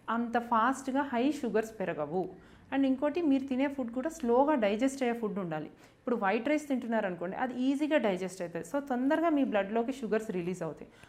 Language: English